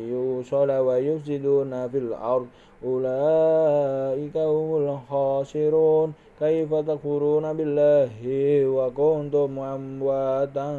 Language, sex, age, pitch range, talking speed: Indonesian, male, 20-39, 130-150 Hz, 60 wpm